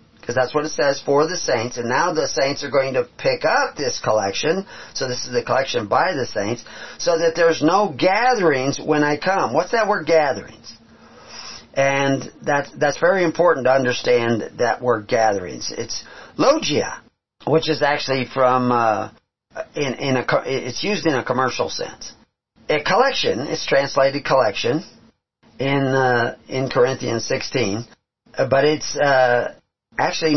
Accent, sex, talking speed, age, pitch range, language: American, male, 155 wpm, 40-59, 130-180 Hz, English